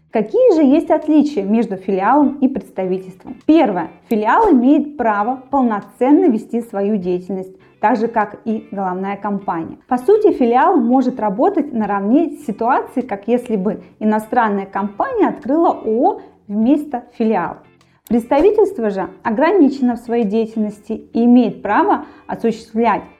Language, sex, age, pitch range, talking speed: Russian, female, 20-39, 205-285 Hz, 125 wpm